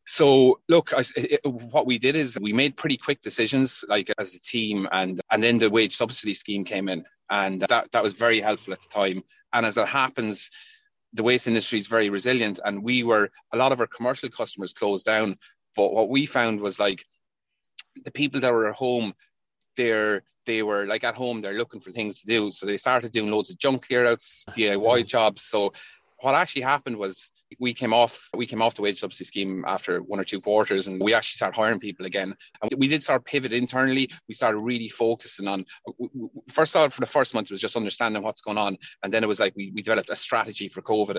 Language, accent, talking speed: English, Irish, 225 wpm